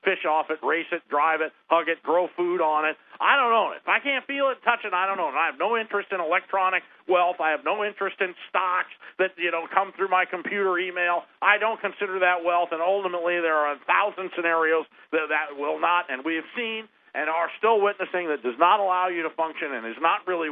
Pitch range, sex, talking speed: 140-185 Hz, male, 245 wpm